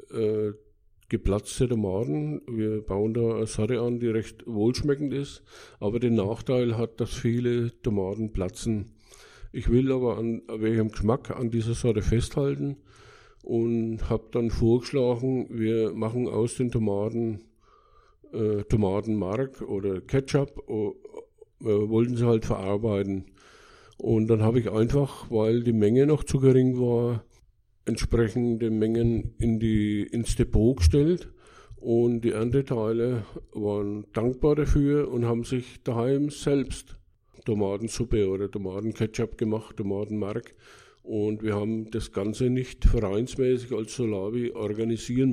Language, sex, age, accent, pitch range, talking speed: German, male, 50-69, German, 105-125 Hz, 130 wpm